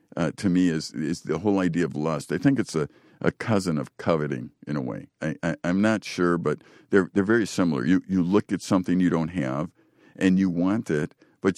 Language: English